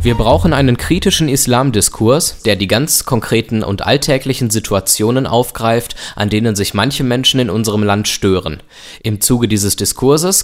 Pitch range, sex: 100-125 Hz, male